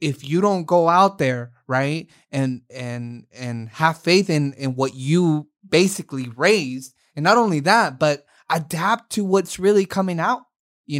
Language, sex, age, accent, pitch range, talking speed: English, male, 20-39, American, 135-170 Hz, 165 wpm